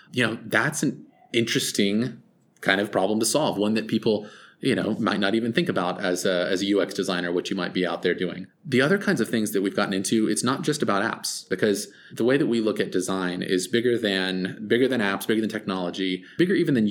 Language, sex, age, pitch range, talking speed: English, male, 20-39, 95-115 Hz, 240 wpm